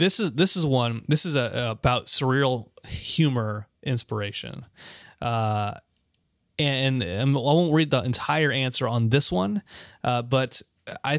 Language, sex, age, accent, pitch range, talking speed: English, male, 30-49, American, 115-145 Hz, 150 wpm